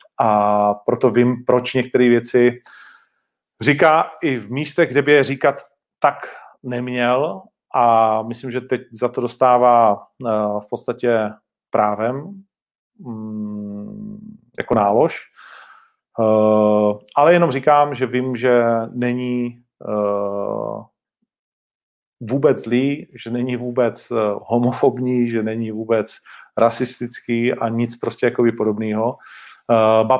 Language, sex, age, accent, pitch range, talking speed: Czech, male, 40-59, native, 110-125 Hz, 100 wpm